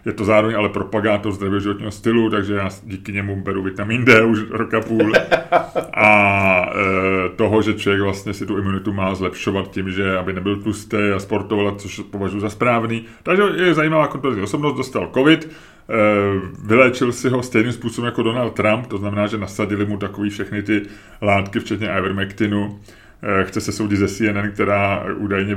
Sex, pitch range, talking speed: male, 95-110 Hz, 170 wpm